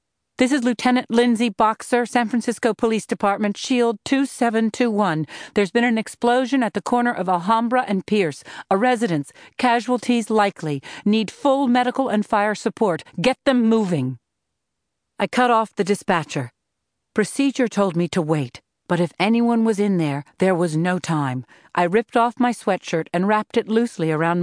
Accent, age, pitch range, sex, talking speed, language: American, 50-69, 170-235 Hz, female, 160 wpm, English